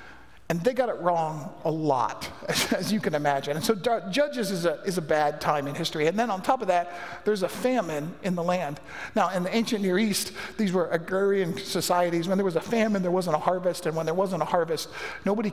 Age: 50-69